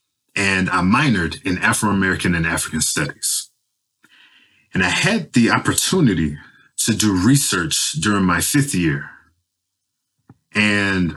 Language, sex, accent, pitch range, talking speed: English, male, American, 90-125 Hz, 115 wpm